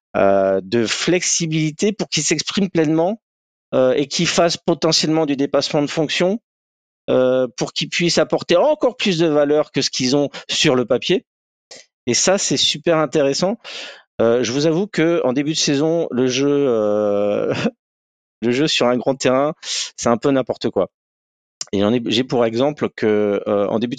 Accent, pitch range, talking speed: French, 105-160 Hz, 170 wpm